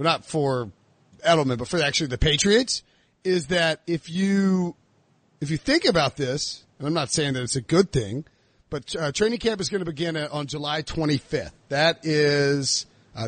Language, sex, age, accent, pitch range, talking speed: English, male, 40-59, American, 140-180 Hz, 190 wpm